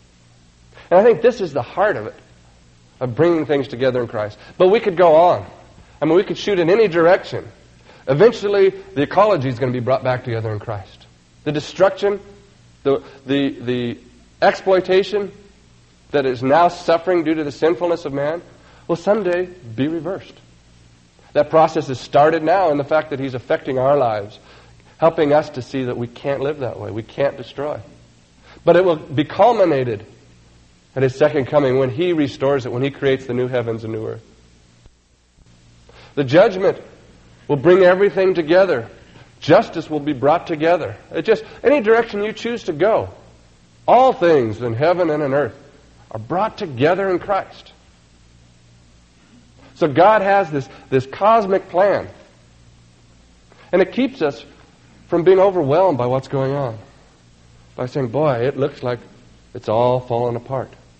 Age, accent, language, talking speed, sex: 50-69, American, English, 165 wpm, male